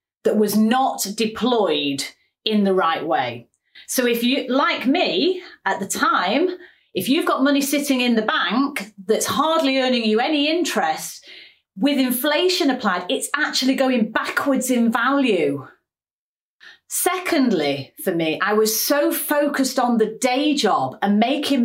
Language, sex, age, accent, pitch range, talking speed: English, female, 30-49, British, 205-275 Hz, 145 wpm